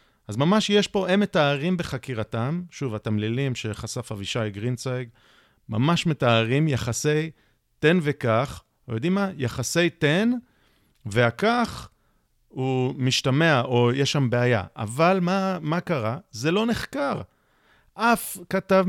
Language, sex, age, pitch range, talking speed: Hebrew, male, 40-59, 120-165 Hz, 120 wpm